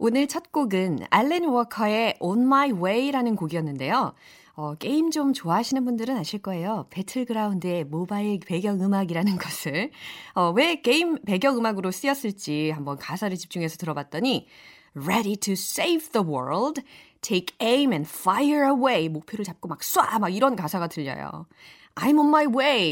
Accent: native